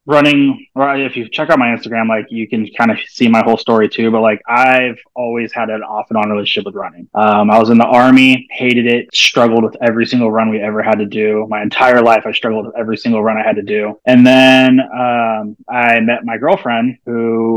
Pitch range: 110-130 Hz